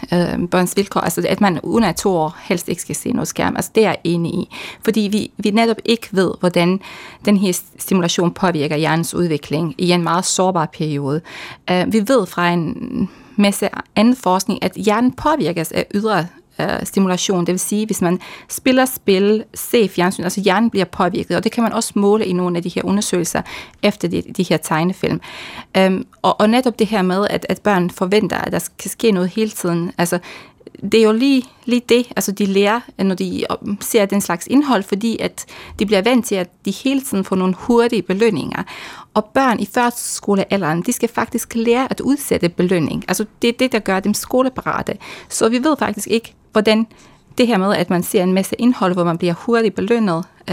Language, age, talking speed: Danish, 30-49, 200 wpm